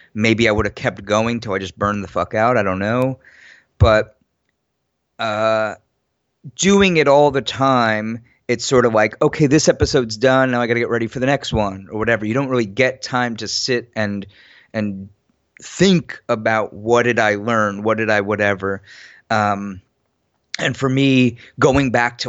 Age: 30-49